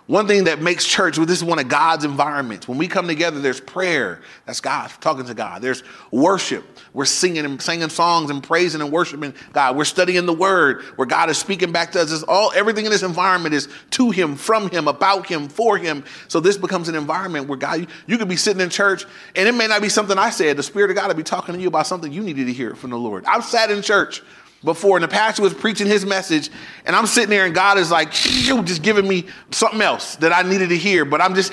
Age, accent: 30-49, American